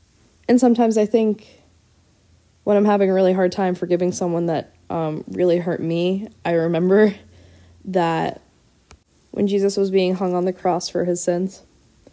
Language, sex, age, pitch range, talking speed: English, female, 20-39, 170-200 Hz, 160 wpm